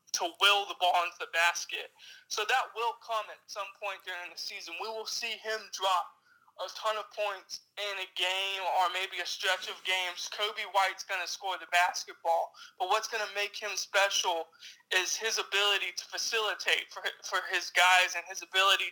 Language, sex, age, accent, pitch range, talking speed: English, male, 20-39, American, 185-210 Hz, 195 wpm